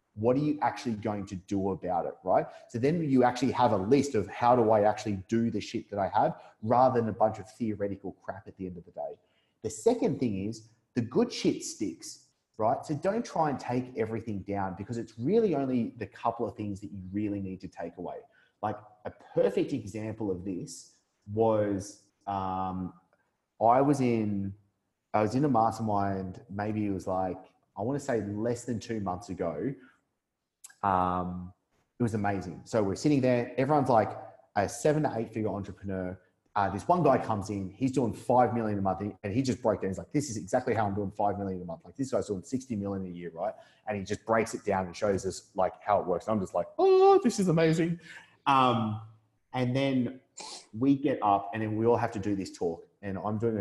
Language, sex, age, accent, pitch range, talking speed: English, male, 30-49, Australian, 100-125 Hz, 215 wpm